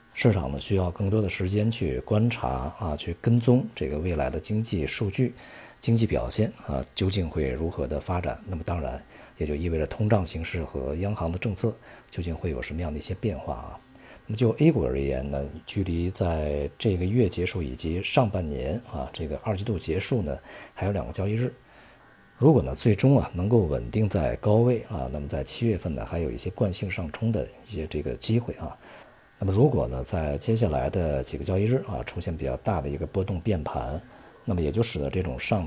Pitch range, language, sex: 75-105 Hz, Chinese, male